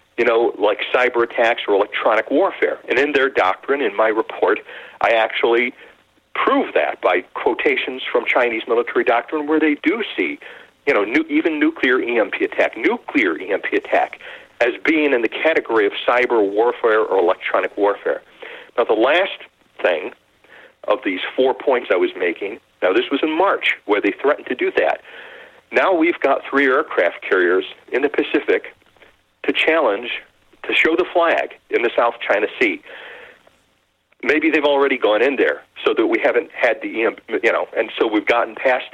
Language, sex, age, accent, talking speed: English, male, 40-59, American, 170 wpm